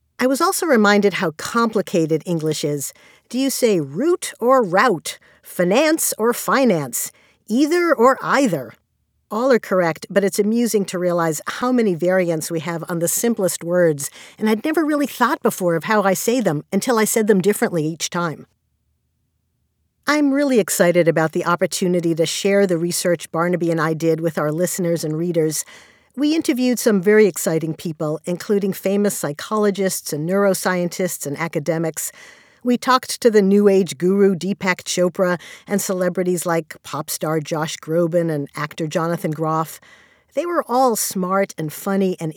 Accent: American